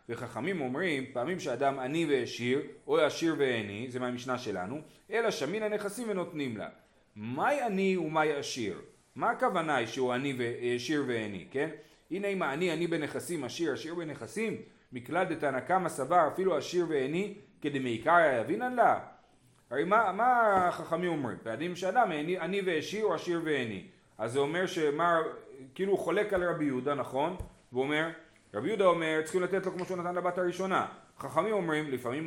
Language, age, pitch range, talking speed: Hebrew, 30-49, 140-195 Hz, 160 wpm